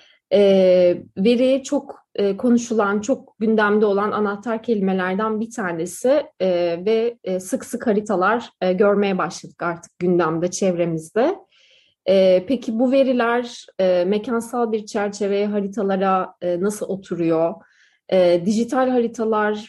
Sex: female